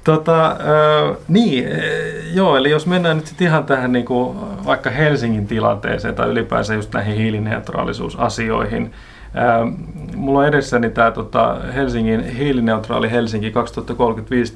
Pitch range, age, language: 115-140 Hz, 30-49, Finnish